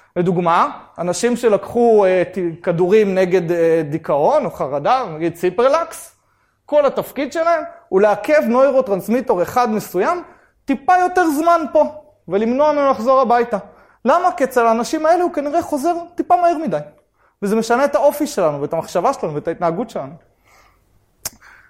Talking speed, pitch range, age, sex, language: 140 wpm, 180-250 Hz, 20-39, male, Hebrew